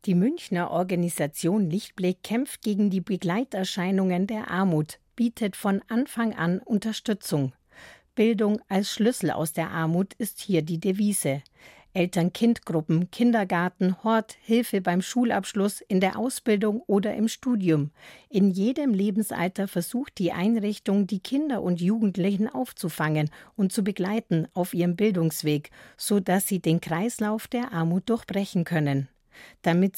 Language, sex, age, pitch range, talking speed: German, female, 50-69, 170-215 Hz, 125 wpm